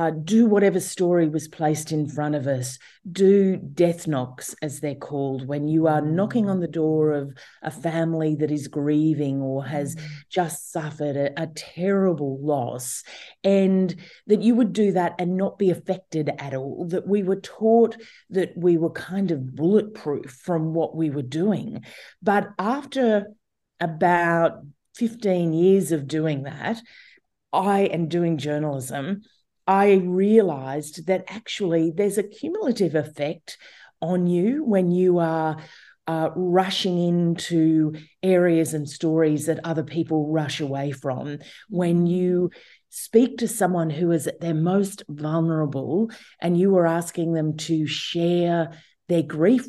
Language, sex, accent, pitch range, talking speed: English, female, Australian, 155-195 Hz, 145 wpm